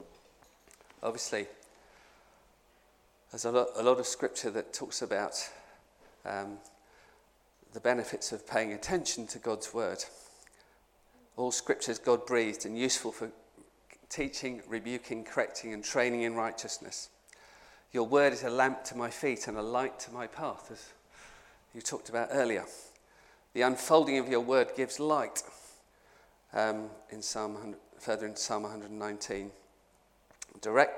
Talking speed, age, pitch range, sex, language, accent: 125 wpm, 40-59, 110-125 Hz, male, English, British